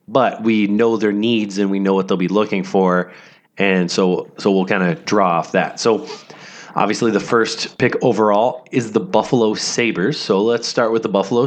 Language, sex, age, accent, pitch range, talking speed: English, male, 30-49, American, 100-120 Hz, 200 wpm